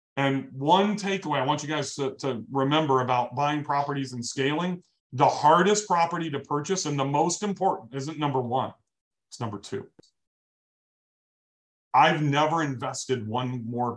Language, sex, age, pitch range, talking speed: English, male, 40-59, 110-140 Hz, 150 wpm